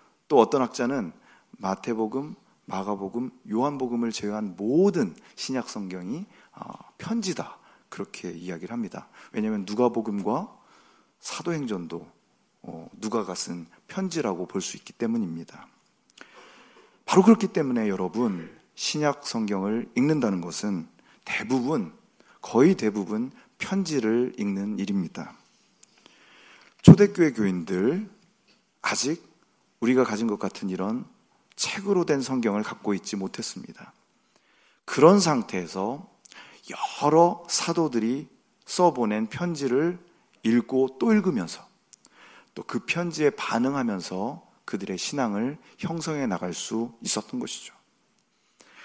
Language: Korean